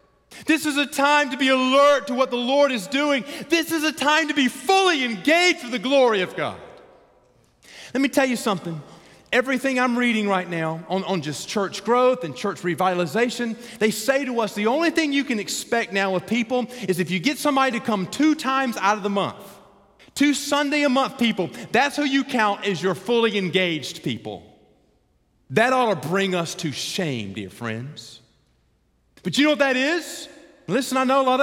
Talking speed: 200 wpm